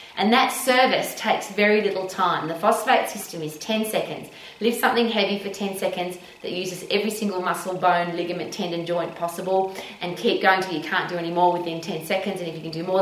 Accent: Australian